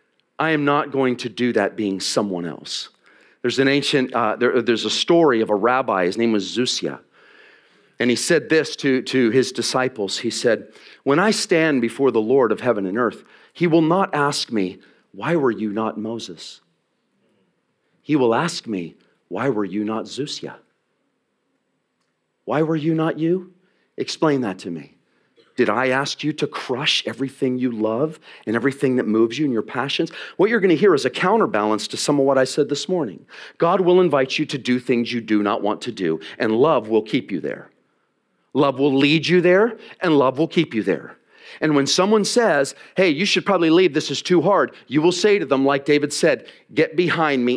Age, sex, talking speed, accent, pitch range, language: 40-59, male, 200 wpm, American, 110-155 Hz, English